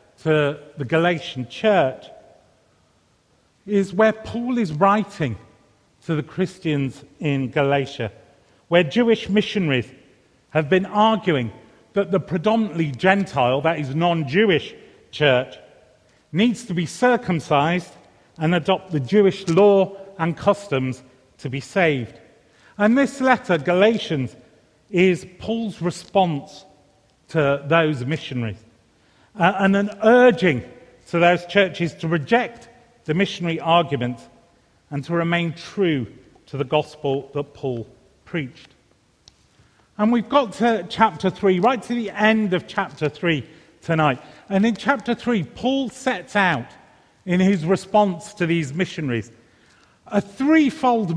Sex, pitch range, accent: male, 145-205 Hz, British